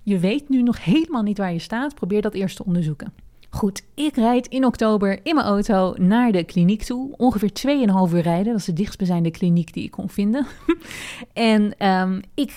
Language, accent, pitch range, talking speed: Dutch, Dutch, 180-225 Hz, 195 wpm